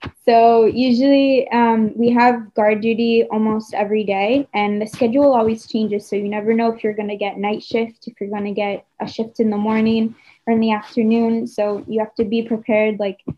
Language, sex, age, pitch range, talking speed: Dutch, female, 10-29, 205-230 Hz, 210 wpm